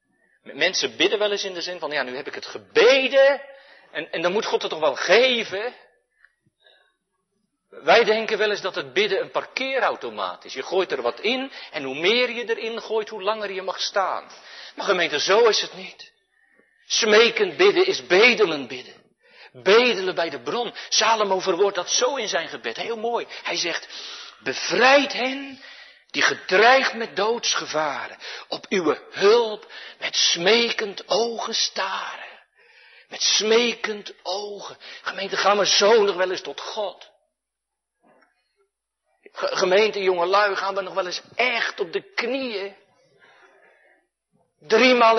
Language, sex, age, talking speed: Dutch, male, 50-69, 150 wpm